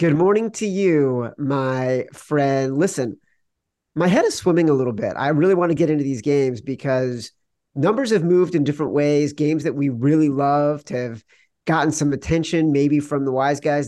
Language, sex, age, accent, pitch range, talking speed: English, male, 40-59, American, 125-165 Hz, 190 wpm